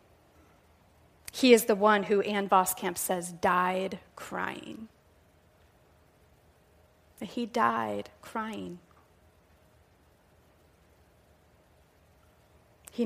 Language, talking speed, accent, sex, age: English, 65 wpm, American, female, 30-49